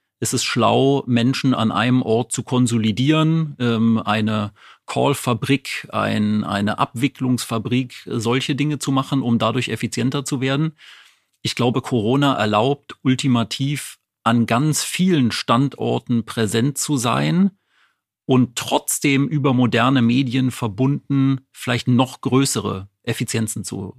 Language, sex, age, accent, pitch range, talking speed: German, male, 40-59, German, 115-135 Hz, 115 wpm